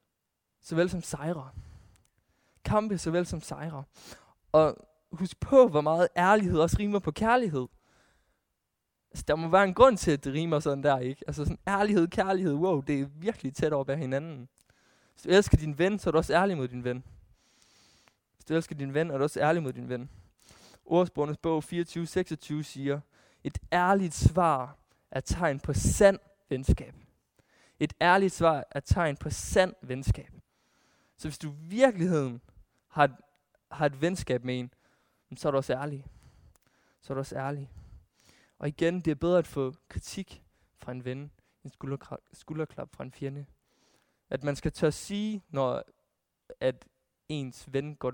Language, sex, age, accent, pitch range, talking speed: Danish, male, 20-39, native, 135-170 Hz, 170 wpm